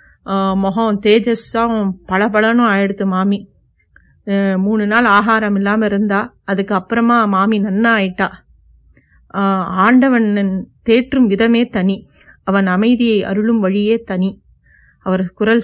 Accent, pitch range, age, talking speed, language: native, 190-220 Hz, 30-49, 95 wpm, Tamil